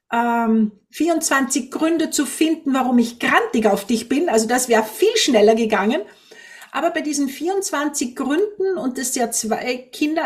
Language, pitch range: German, 245-320 Hz